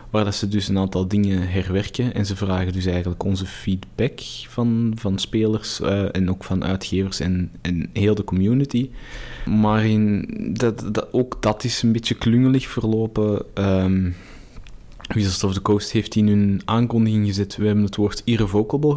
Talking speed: 155 wpm